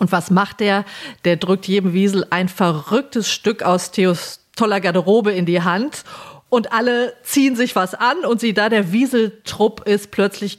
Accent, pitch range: German, 190-280 Hz